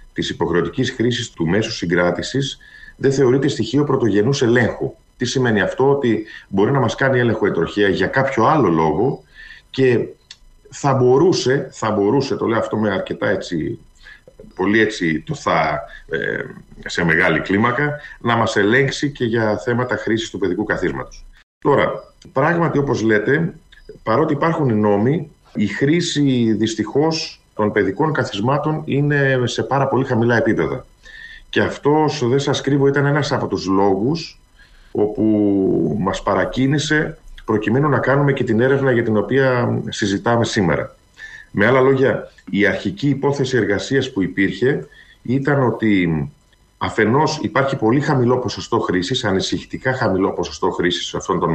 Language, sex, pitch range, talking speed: Greek, male, 105-140 Hz, 145 wpm